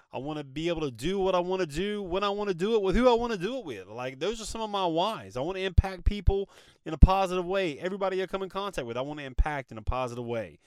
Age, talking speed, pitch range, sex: 30-49, 315 wpm, 125-180 Hz, male